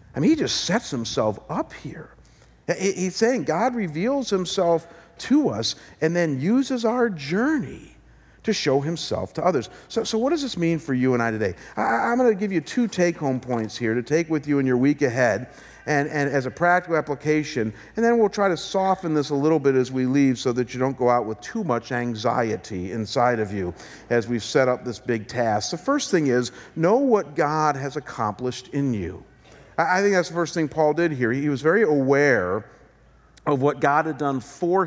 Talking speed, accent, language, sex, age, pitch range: 210 wpm, American, English, male, 50-69, 125-180 Hz